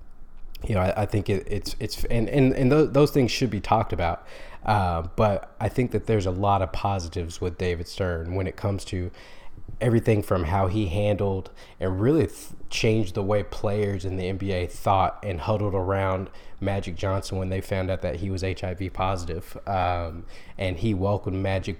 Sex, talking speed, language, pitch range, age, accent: male, 195 wpm, English, 90-105 Hz, 20-39, American